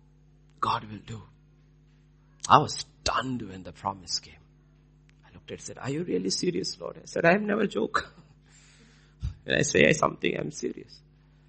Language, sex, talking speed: English, male, 165 wpm